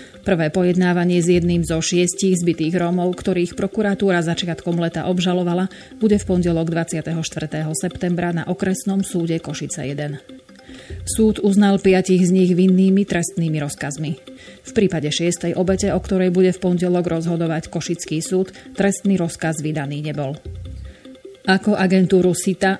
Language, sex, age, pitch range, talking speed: Slovak, female, 30-49, 165-195 Hz, 130 wpm